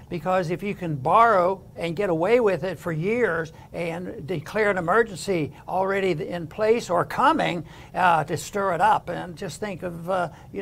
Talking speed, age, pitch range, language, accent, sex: 180 wpm, 60-79, 165-205 Hz, English, American, male